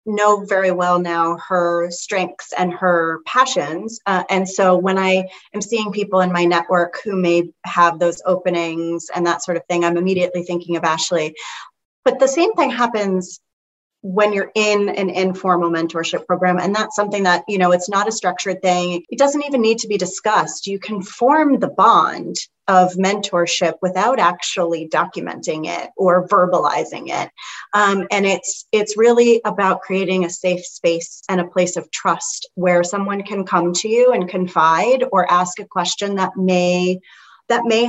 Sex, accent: female, American